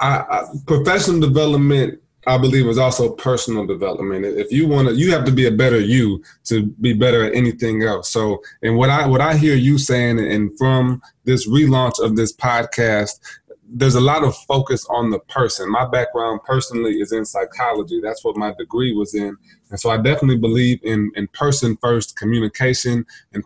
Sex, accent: male, American